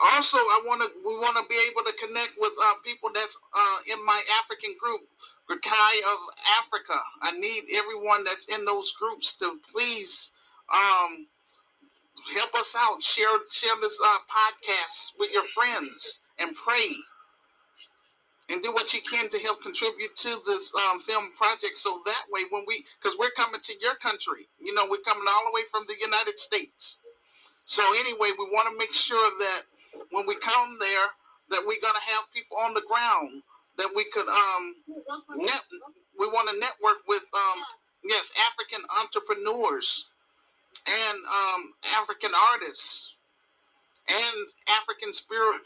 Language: English